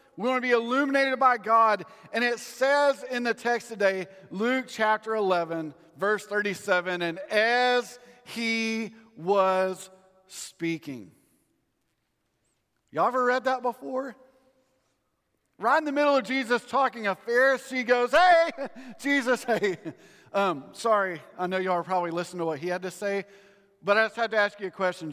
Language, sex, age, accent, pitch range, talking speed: English, male, 50-69, American, 180-240 Hz, 155 wpm